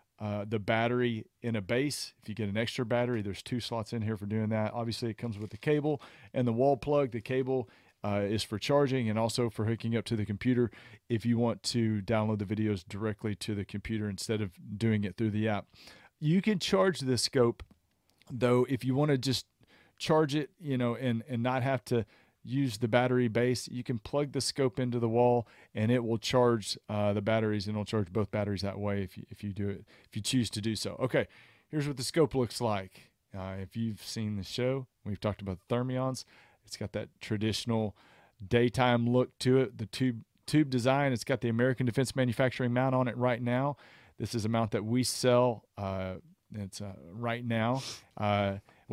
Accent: American